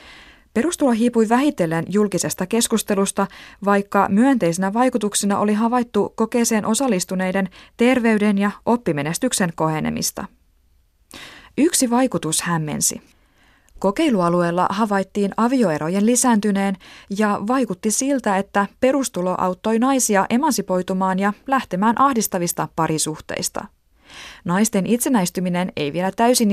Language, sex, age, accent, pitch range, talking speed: Finnish, female, 20-39, native, 170-230 Hz, 90 wpm